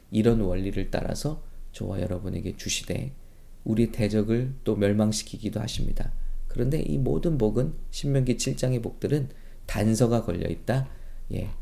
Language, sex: English, male